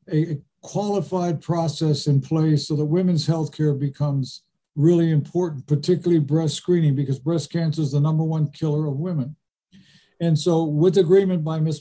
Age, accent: 60-79, American